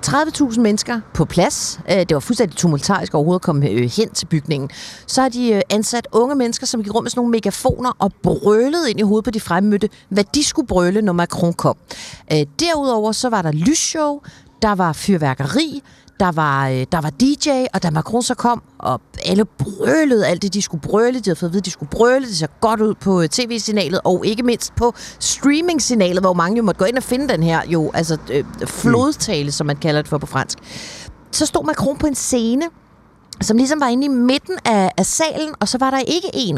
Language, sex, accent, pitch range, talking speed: Danish, female, native, 175-245 Hz, 210 wpm